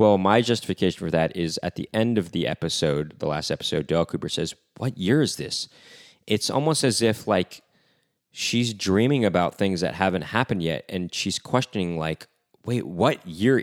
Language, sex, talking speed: English, male, 185 wpm